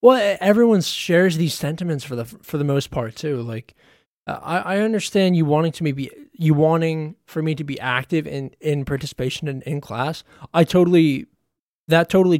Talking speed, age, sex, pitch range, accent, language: 180 wpm, 20-39, male, 115-155 Hz, American, English